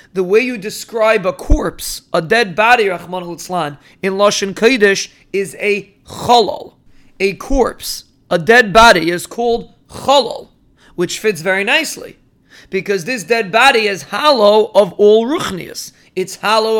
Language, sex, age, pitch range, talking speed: English, male, 30-49, 185-230 Hz, 145 wpm